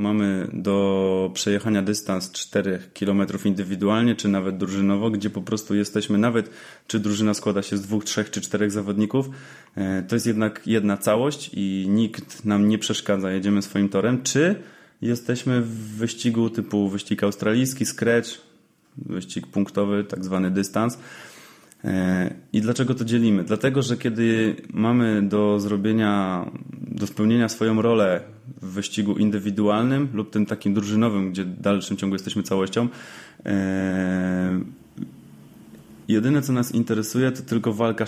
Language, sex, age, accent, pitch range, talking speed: Polish, male, 20-39, native, 100-115 Hz, 135 wpm